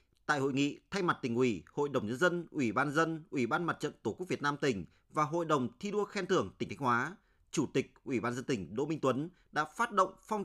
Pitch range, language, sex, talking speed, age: 135-185 Hz, Vietnamese, male, 265 wpm, 30-49